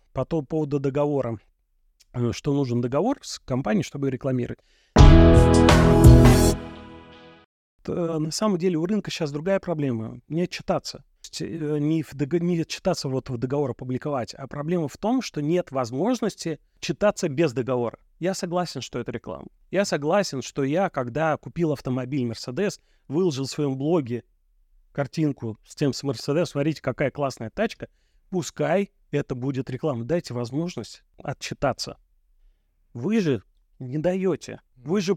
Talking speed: 140 wpm